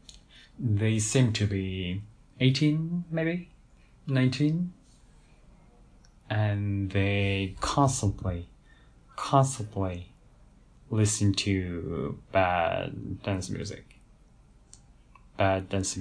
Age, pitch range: 10-29, 95-125 Hz